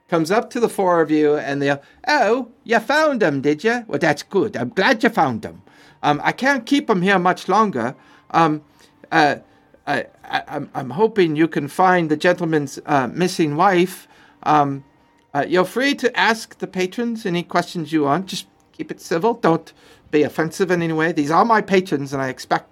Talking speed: 200 wpm